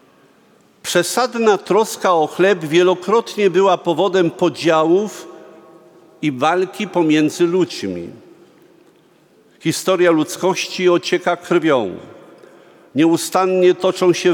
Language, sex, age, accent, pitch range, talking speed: Polish, male, 50-69, native, 160-195 Hz, 80 wpm